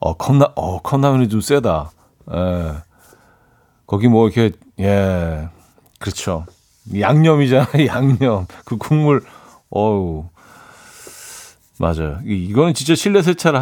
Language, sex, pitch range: Korean, male, 95-155 Hz